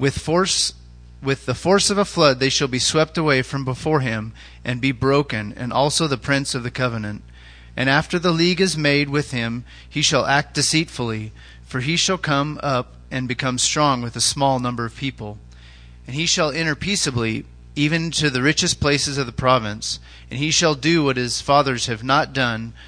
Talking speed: 195 wpm